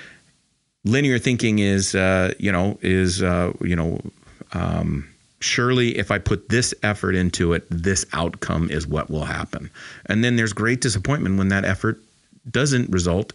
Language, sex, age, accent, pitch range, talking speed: English, male, 40-59, American, 85-110 Hz, 155 wpm